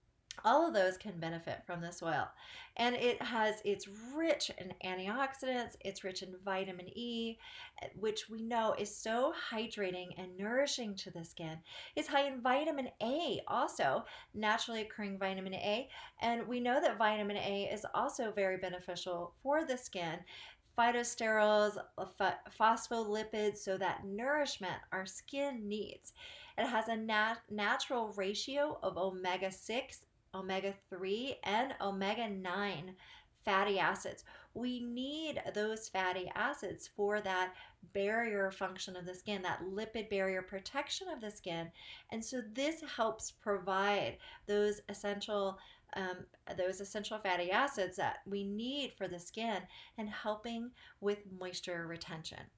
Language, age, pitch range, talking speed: English, 40-59, 190-235 Hz, 135 wpm